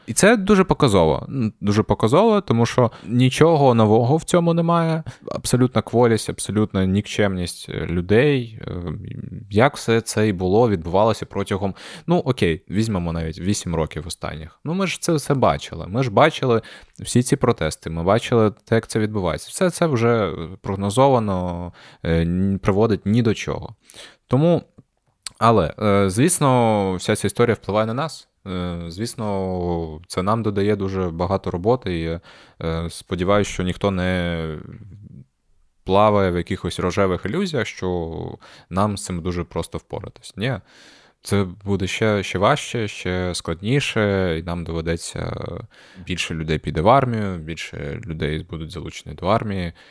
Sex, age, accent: male, 20-39, native